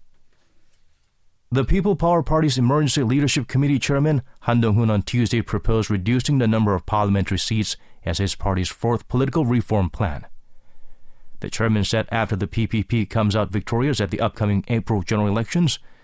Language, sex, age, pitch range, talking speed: English, male, 30-49, 105-130 Hz, 155 wpm